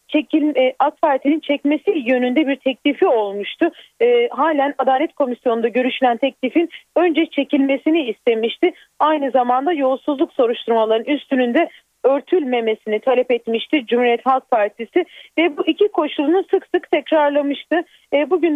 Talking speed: 125 wpm